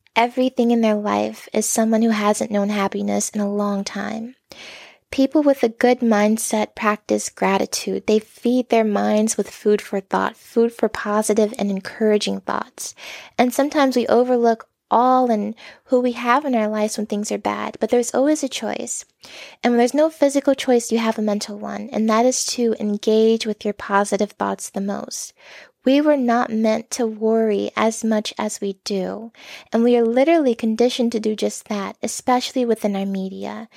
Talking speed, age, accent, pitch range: 180 wpm, 10-29, American, 210-245 Hz